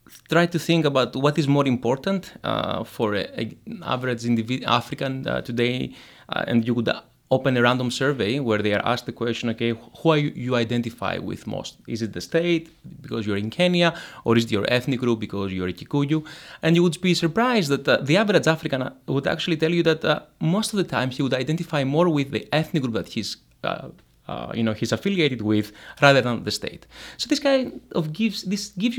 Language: English